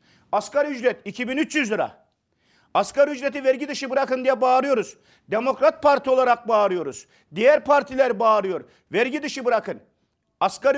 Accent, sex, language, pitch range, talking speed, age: native, male, Turkish, 230-285 Hz, 120 wpm, 50-69